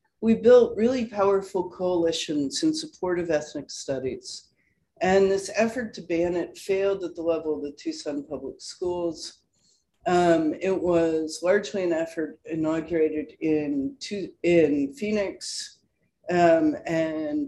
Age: 50-69